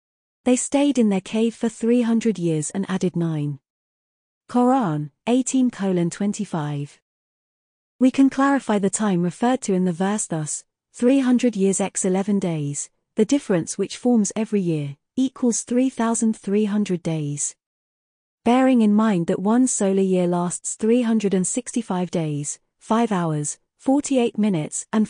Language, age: English, 40-59